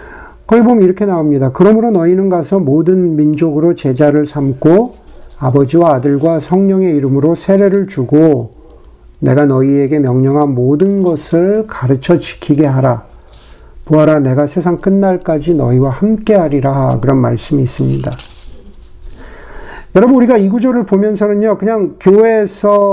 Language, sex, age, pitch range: Korean, male, 50-69, 145-195 Hz